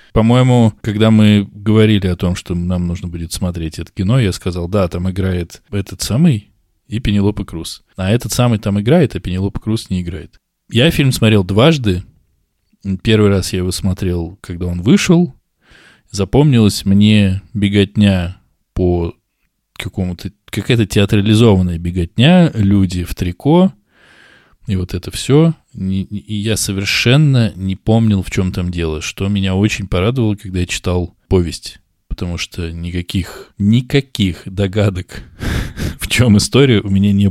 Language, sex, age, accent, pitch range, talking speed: Russian, male, 20-39, native, 90-110 Hz, 140 wpm